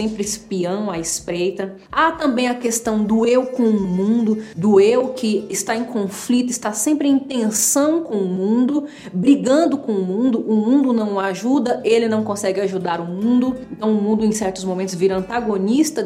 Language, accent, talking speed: Portuguese, Brazilian, 180 wpm